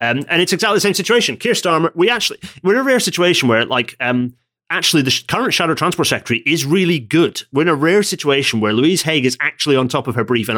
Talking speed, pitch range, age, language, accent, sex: 255 wpm, 125-165 Hz, 30-49, English, British, male